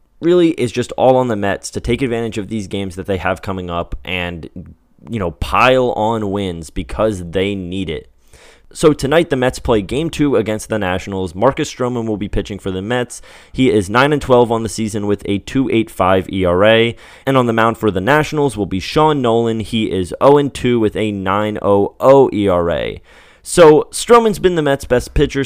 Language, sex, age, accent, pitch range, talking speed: English, male, 20-39, American, 100-130 Hz, 200 wpm